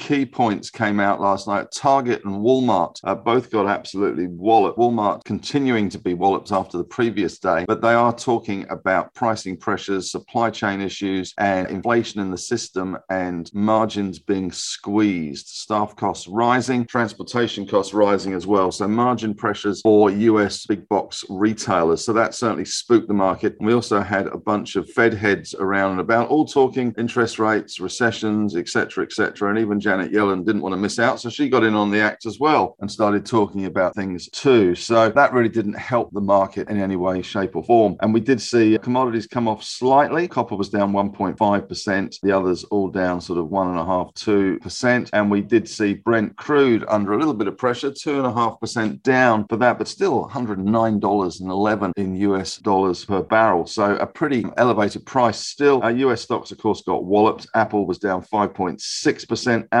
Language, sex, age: English, male, 50-69